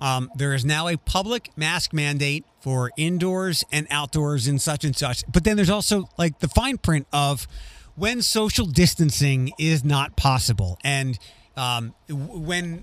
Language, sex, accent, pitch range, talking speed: English, male, American, 140-175 Hz, 160 wpm